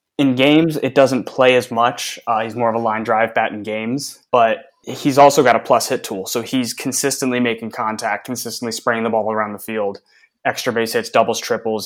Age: 20-39